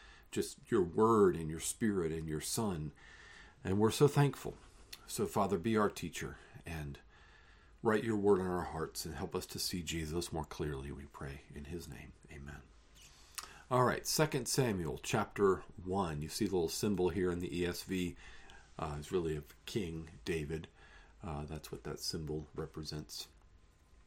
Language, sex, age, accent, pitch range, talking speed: English, male, 50-69, American, 80-130 Hz, 165 wpm